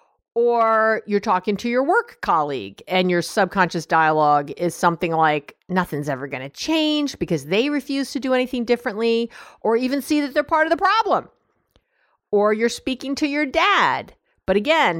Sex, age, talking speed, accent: female, 50-69, 170 wpm, American